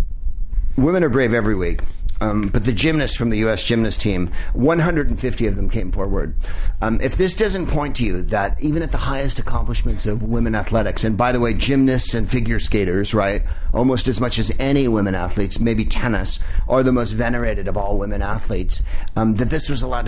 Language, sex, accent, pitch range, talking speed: English, male, American, 90-125 Hz, 195 wpm